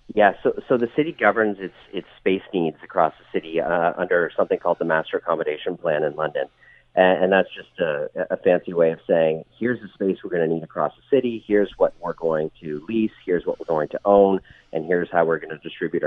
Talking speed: 230 wpm